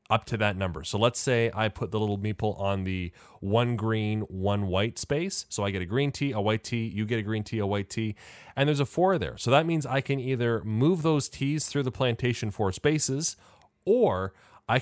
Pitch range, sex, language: 100-125 Hz, male, English